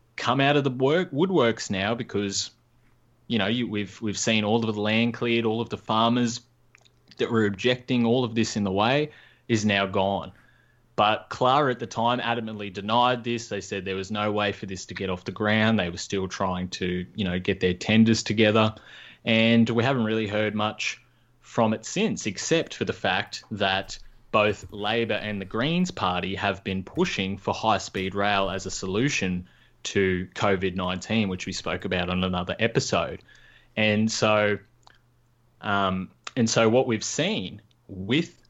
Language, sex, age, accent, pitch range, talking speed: English, male, 20-39, Australian, 95-115 Hz, 180 wpm